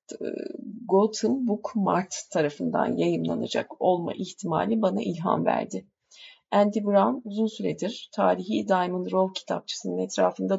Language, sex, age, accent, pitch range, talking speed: Turkish, female, 30-49, native, 170-220 Hz, 110 wpm